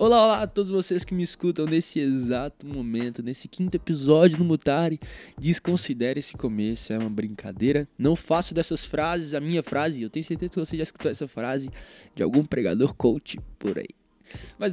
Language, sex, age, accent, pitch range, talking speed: Portuguese, male, 20-39, Brazilian, 155-195 Hz, 185 wpm